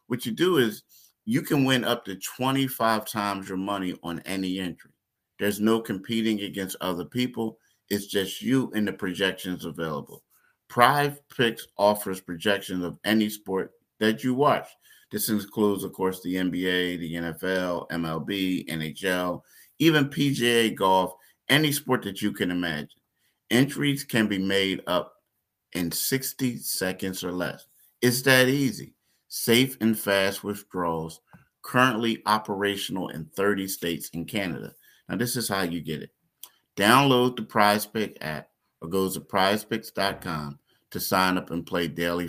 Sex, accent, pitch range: male, American, 90-115 Hz